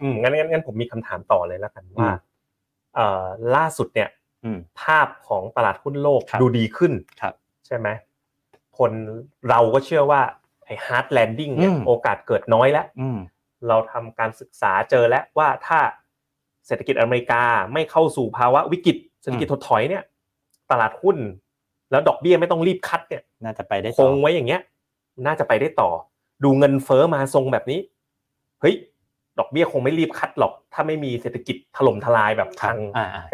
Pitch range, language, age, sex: 115-155 Hz, Thai, 30-49, male